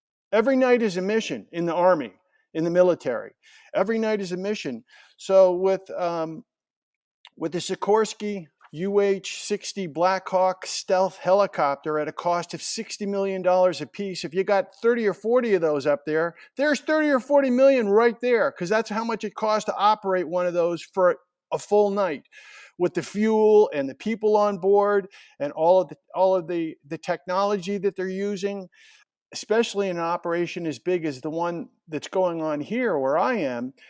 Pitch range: 175-215 Hz